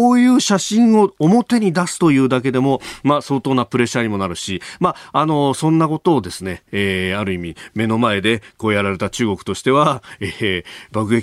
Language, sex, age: Japanese, male, 40-59